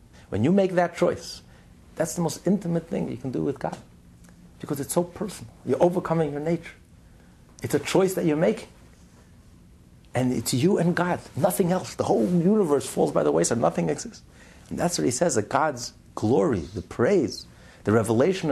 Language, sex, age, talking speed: English, male, 60-79, 185 wpm